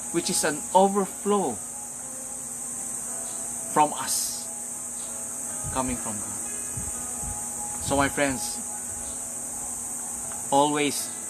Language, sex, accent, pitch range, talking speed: English, male, Filipino, 105-165 Hz, 70 wpm